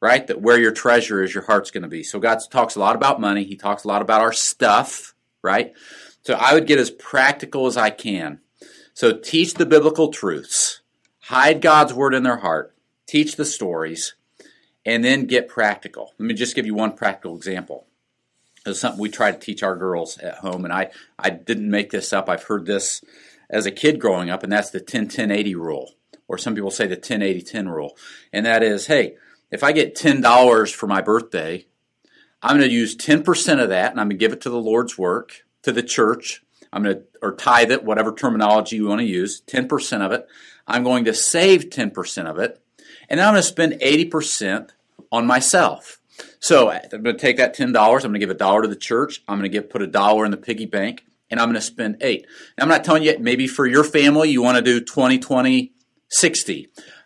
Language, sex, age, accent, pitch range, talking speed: English, male, 40-59, American, 105-150 Hz, 225 wpm